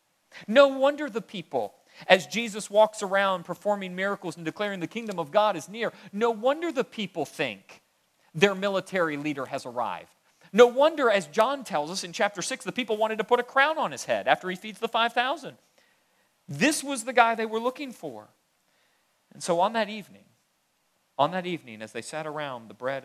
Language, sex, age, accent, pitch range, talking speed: English, male, 40-59, American, 135-215 Hz, 195 wpm